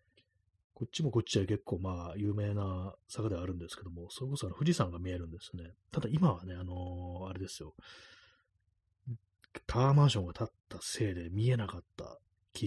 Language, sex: Japanese, male